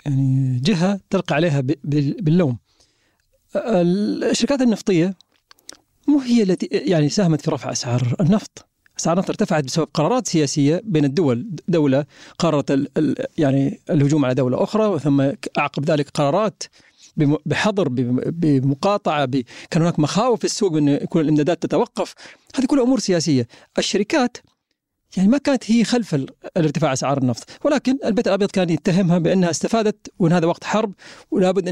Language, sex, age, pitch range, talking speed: Arabic, male, 40-59, 145-200 Hz, 140 wpm